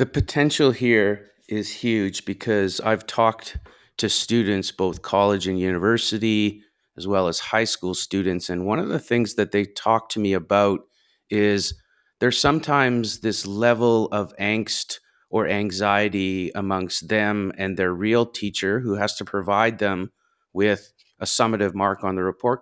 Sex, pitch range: male, 100-120 Hz